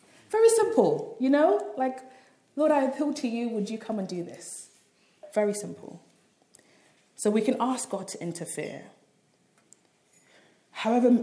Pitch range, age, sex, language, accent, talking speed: 160-220 Hz, 20-39, female, English, British, 140 wpm